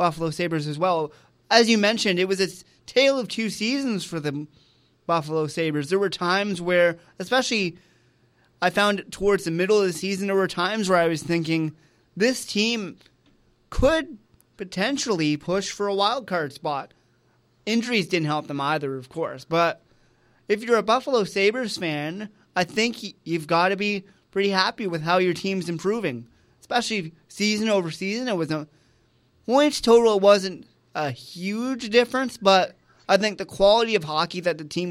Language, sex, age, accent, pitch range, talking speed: English, male, 30-49, American, 160-205 Hz, 170 wpm